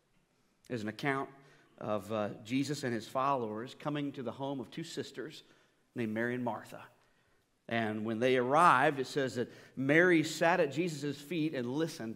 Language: English